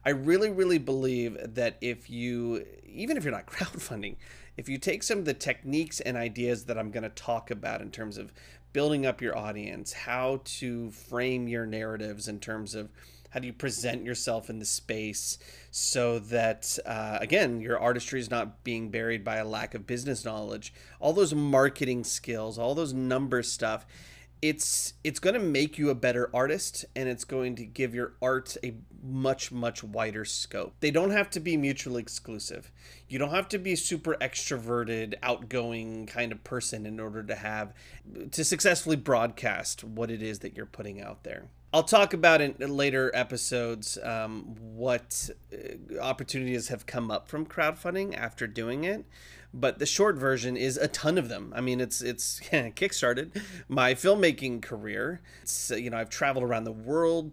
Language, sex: English, male